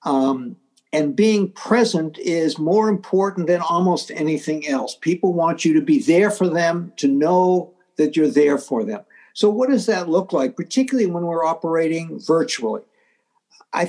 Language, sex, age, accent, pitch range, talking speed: English, male, 60-79, American, 160-225 Hz, 165 wpm